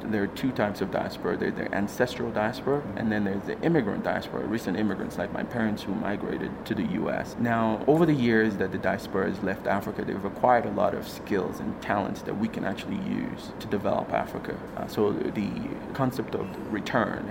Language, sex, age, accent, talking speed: English, male, 30-49, American, 200 wpm